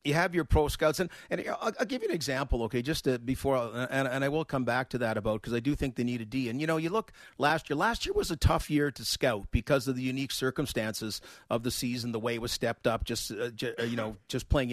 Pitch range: 135-165 Hz